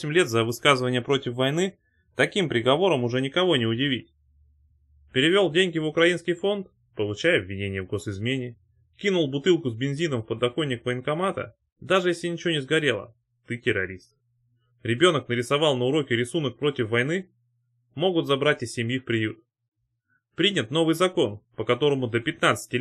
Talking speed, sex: 140 wpm, male